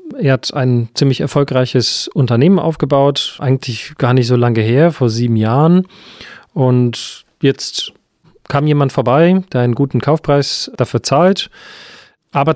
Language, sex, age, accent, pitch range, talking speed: German, male, 40-59, German, 125-155 Hz, 135 wpm